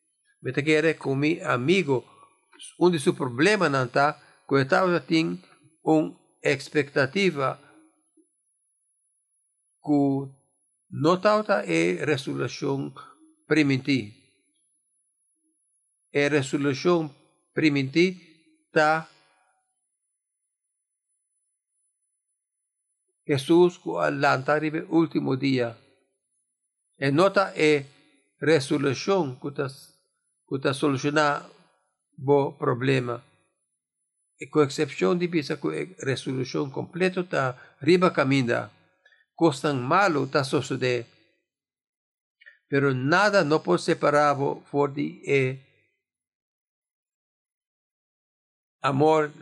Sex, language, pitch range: male, English, 135-175 Hz